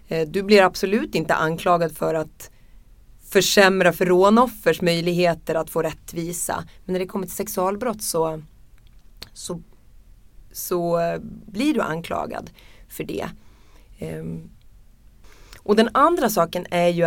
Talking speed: 115 wpm